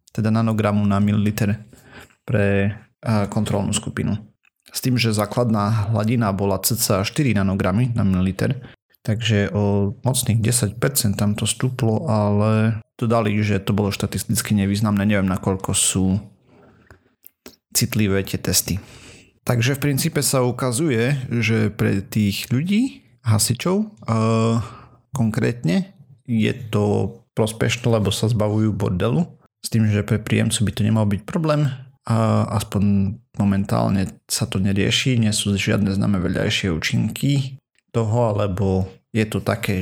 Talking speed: 125 wpm